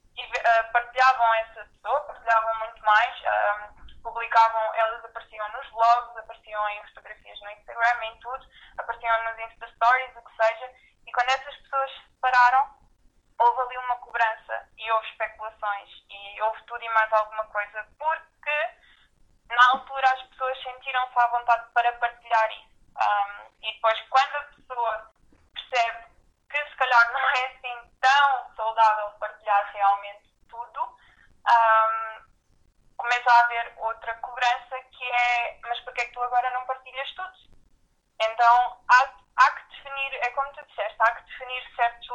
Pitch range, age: 220-255 Hz, 20-39